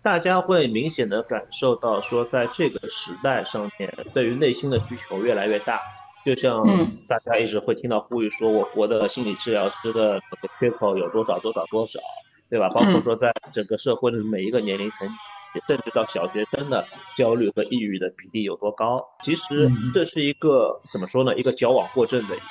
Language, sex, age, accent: Chinese, male, 30-49, native